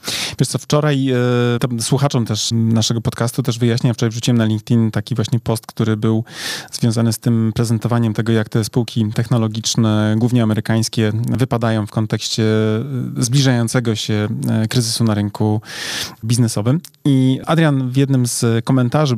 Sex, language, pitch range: male, Polish, 115-140 Hz